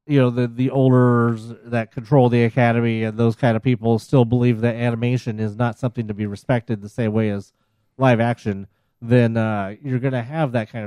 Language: English